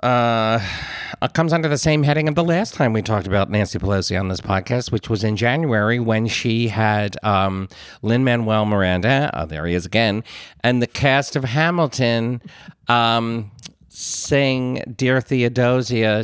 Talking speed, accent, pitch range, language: 165 wpm, American, 95-125 Hz, English